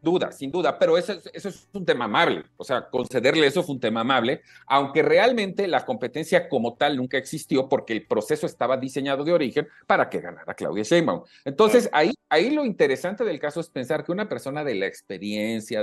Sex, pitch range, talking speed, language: male, 130-190 Hz, 200 wpm, Spanish